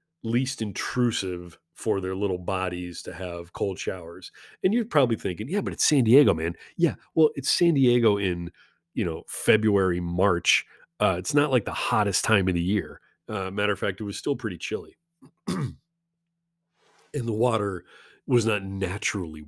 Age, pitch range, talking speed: 30-49, 100-135 Hz, 170 wpm